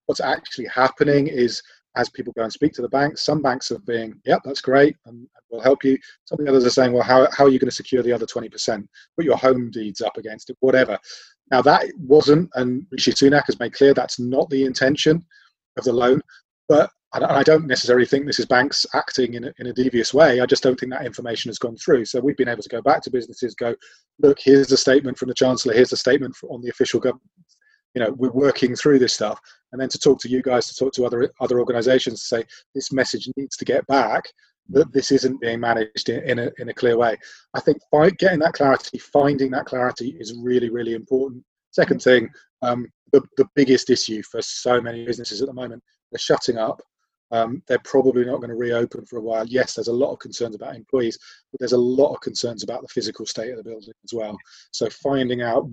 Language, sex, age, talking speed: English, male, 30-49, 240 wpm